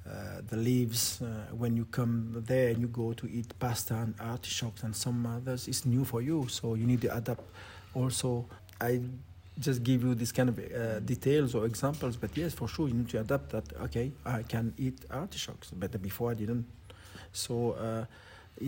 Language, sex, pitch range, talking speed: English, male, 100-125 Hz, 195 wpm